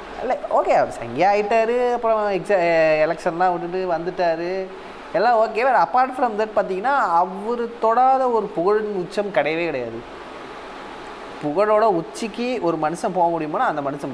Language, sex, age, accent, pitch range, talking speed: Tamil, male, 20-39, native, 175-225 Hz, 125 wpm